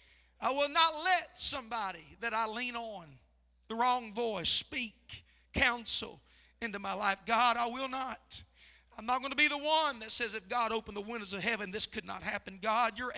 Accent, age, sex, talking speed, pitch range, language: American, 50-69, male, 195 wpm, 210-280 Hz, English